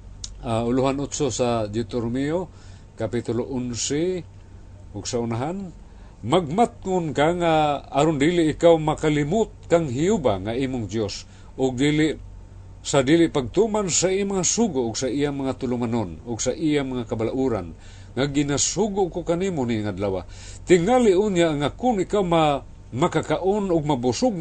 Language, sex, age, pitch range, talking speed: Filipino, male, 50-69, 110-160 Hz, 135 wpm